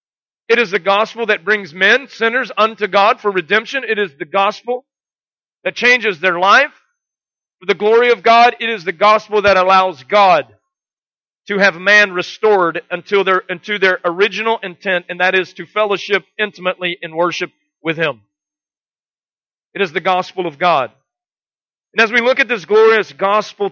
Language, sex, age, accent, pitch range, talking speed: English, male, 40-59, American, 185-225 Hz, 165 wpm